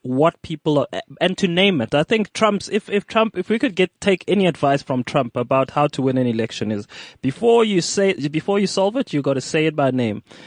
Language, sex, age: English, male, 20-39